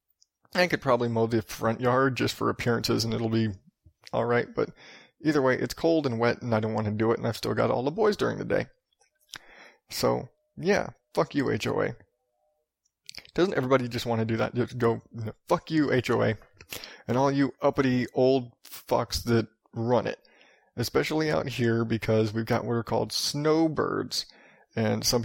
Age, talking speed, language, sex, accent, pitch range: 30-49, 190 wpm, English, male, American, 115-145 Hz